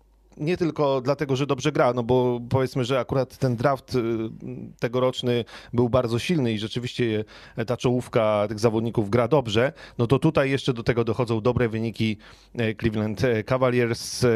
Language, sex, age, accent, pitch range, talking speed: Polish, male, 30-49, native, 115-135 Hz, 150 wpm